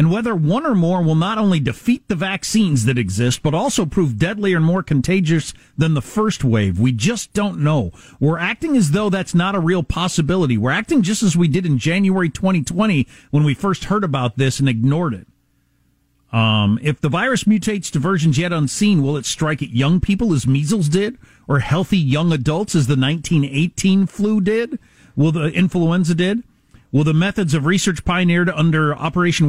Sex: male